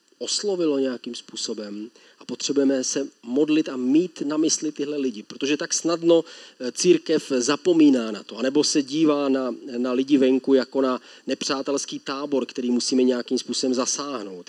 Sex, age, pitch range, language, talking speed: male, 40-59, 125-145 Hz, Czech, 150 wpm